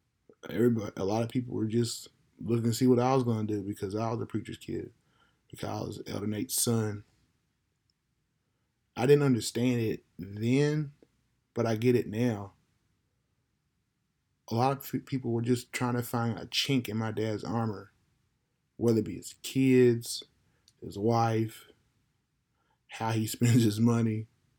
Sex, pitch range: male, 110-125 Hz